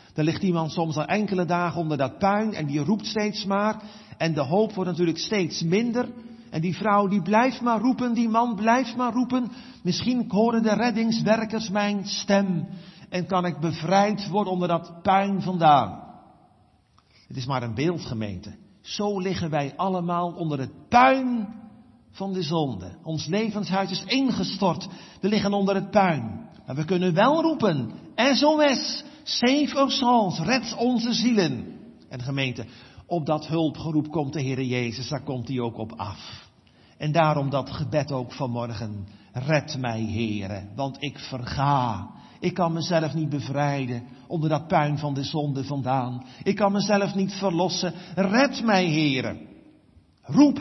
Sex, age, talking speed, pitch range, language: male, 50-69, 160 wpm, 145-210 Hz, Dutch